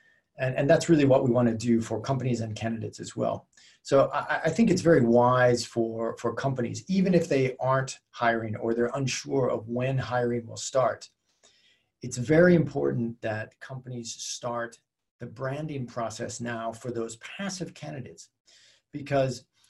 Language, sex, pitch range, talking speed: English, male, 120-140 Hz, 160 wpm